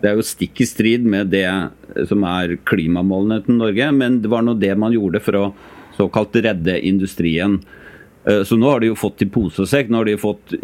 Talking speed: 210 wpm